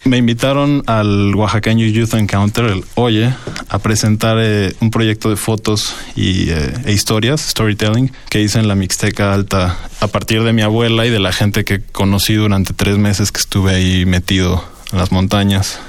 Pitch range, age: 100-115 Hz, 20-39